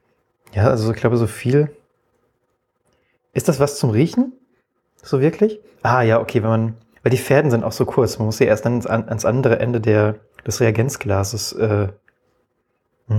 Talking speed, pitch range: 175 wpm, 110-145 Hz